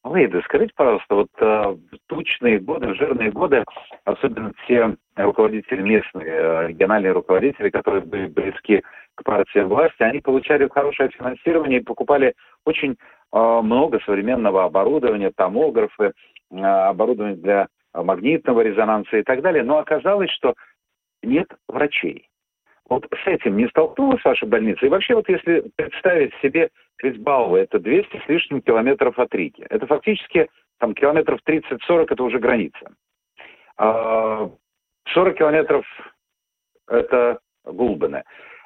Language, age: Russian, 40-59